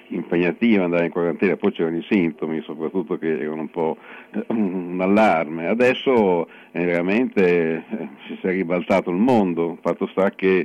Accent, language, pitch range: native, Italian, 85-95 Hz